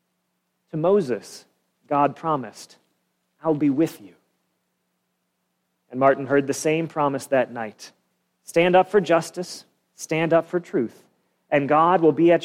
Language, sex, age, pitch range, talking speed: English, male, 40-59, 135-180 Hz, 140 wpm